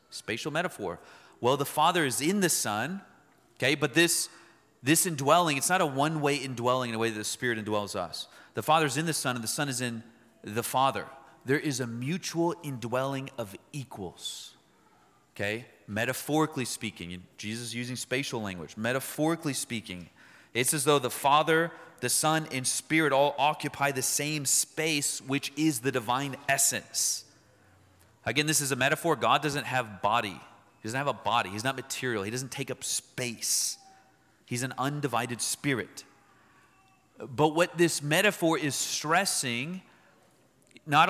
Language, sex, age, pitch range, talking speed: English, male, 30-49, 120-155 Hz, 160 wpm